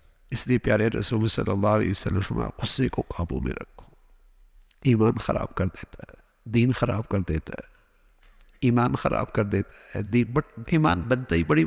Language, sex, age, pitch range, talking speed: English, male, 50-69, 110-135 Hz, 175 wpm